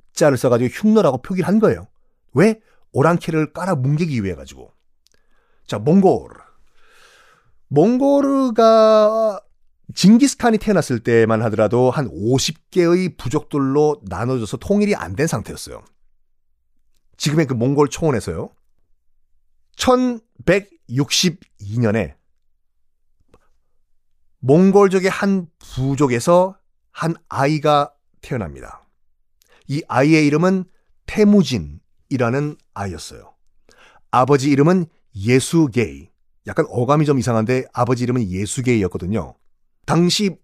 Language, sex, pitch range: Korean, male, 110-175 Hz